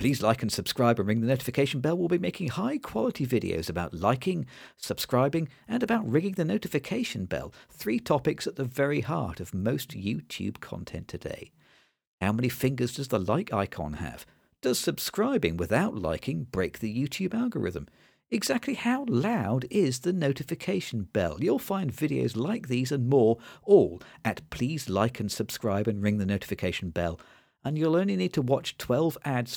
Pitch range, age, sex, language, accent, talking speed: 105-150 Hz, 50-69, male, English, British, 170 wpm